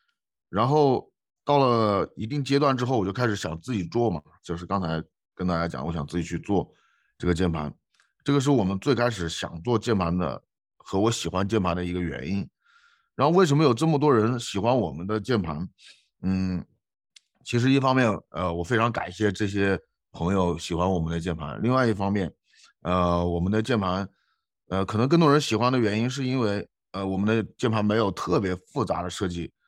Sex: male